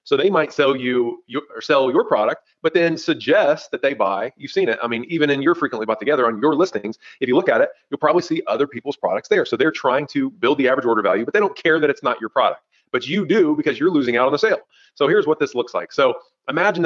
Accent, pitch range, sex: American, 135-185 Hz, male